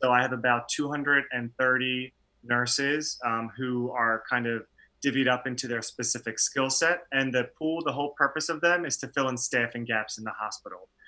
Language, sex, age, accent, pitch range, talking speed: English, male, 30-49, American, 115-130 Hz, 180 wpm